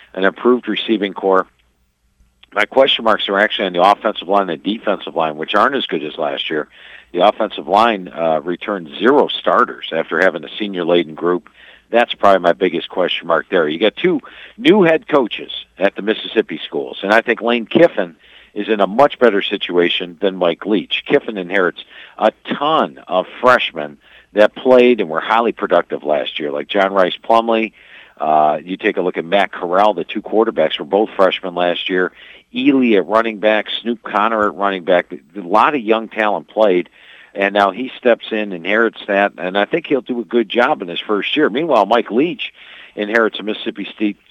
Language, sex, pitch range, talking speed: English, male, 90-115 Hz, 190 wpm